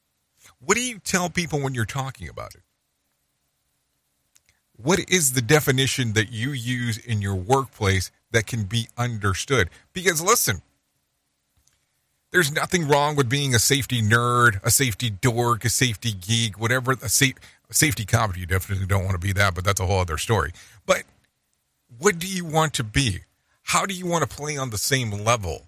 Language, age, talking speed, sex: English, 40-59, 170 wpm, male